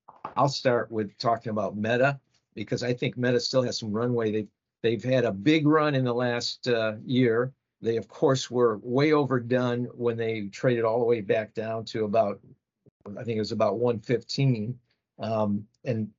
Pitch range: 110-130 Hz